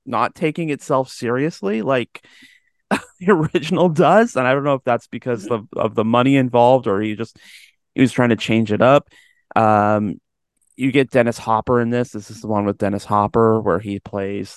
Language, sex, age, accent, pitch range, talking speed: English, male, 30-49, American, 105-130 Hz, 195 wpm